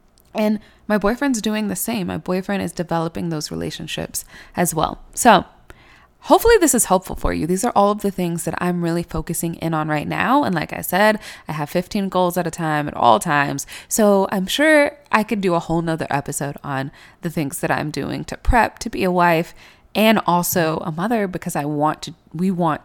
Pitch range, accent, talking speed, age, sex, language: 160-215 Hz, American, 215 wpm, 20-39, female, English